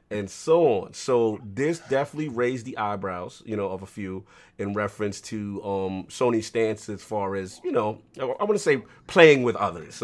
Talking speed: 195 wpm